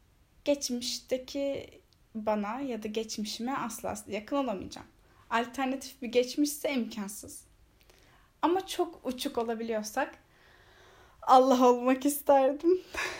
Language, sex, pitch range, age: Turkish, female, 220-290 Hz, 10-29